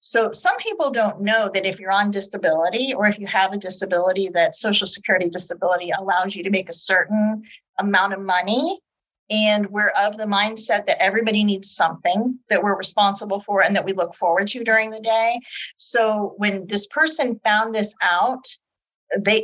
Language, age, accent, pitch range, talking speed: English, 40-59, American, 190-225 Hz, 180 wpm